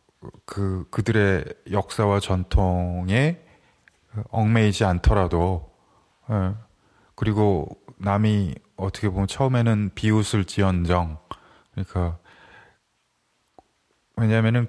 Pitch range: 95-110 Hz